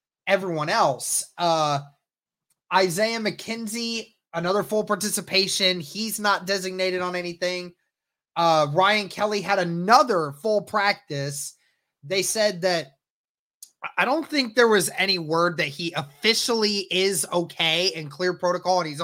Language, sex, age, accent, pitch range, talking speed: English, male, 20-39, American, 155-195 Hz, 125 wpm